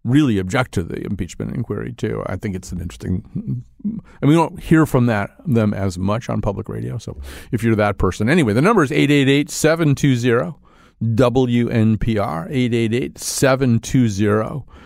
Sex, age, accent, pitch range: male, 50-69, American, 105-130 Hz